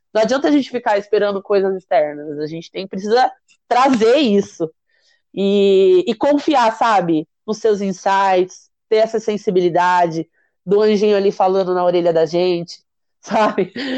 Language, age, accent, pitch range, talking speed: Portuguese, 30-49, Brazilian, 190-240 Hz, 140 wpm